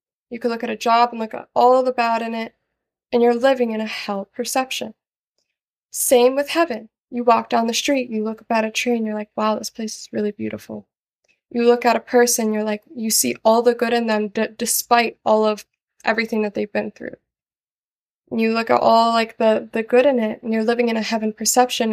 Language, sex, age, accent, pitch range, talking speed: English, female, 20-39, American, 220-245 Hz, 235 wpm